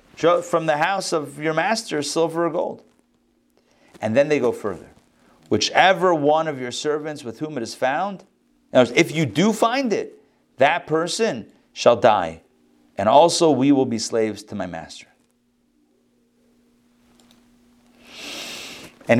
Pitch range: 140-220 Hz